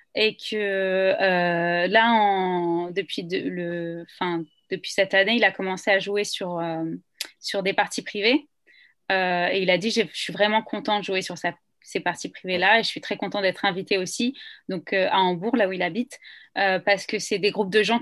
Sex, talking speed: female, 210 wpm